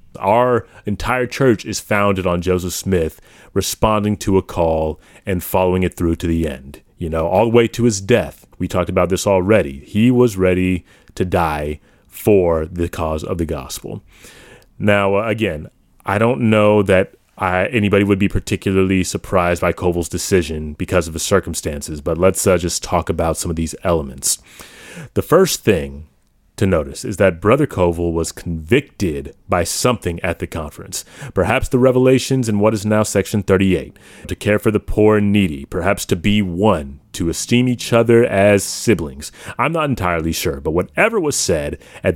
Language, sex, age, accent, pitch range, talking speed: English, male, 30-49, American, 85-105 Hz, 175 wpm